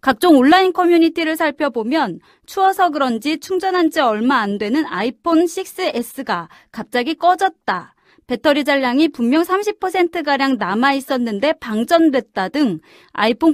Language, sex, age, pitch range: Korean, female, 30-49, 245-325 Hz